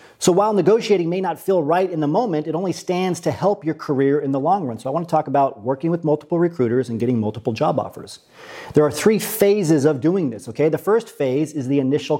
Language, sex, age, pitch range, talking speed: English, male, 40-59, 140-180 Hz, 245 wpm